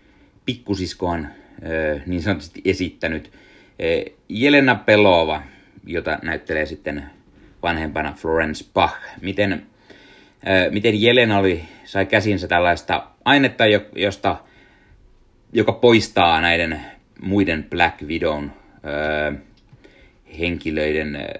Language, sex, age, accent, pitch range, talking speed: Finnish, male, 30-49, native, 80-95 Hz, 80 wpm